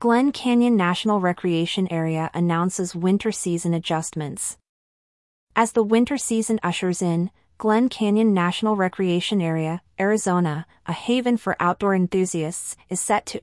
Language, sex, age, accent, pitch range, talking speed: English, female, 30-49, American, 170-210 Hz, 130 wpm